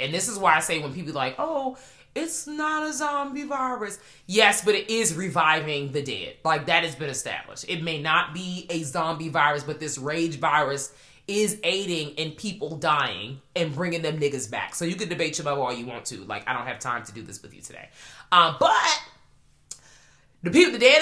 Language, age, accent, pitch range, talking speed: English, 20-39, American, 150-215 Hz, 215 wpm